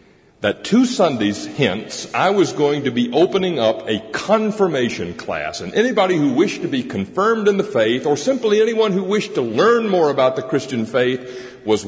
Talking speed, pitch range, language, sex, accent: 185 wpm, 115-175 Hz, English, male, American